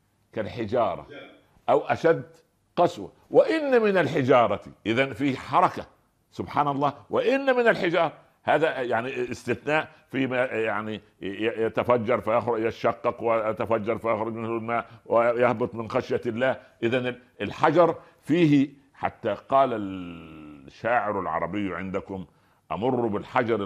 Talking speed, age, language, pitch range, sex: 105 wpm, 60-79, Arabic, 110-150 Hz, male